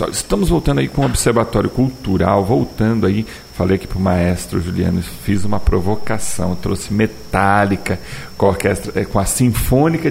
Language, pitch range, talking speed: Portuguese, 95-120 Hz, 140 wpm